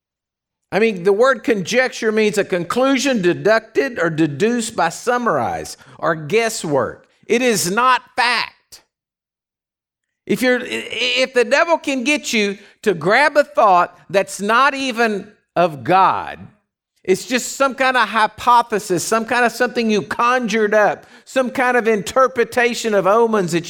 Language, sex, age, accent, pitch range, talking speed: English, male, 50-69, American, 200-255 Hz, 140 wpm